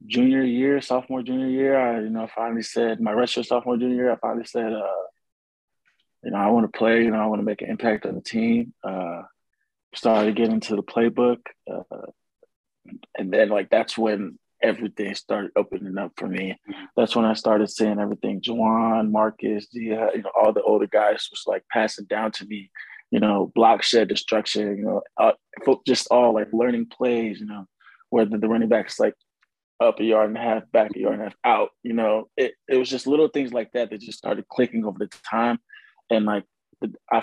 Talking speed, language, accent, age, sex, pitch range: 210 wpm, English, American, 20-39, male, 105-120 Hz